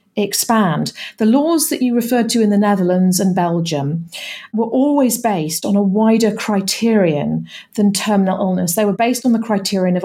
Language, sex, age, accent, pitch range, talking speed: English, female, 40-59, British, 180-230 Hz, 175 wpm